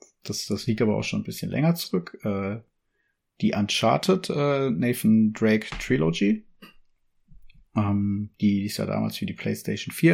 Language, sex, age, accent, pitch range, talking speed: German, male, 30-49, German, 105-130 Hz, 160 wpm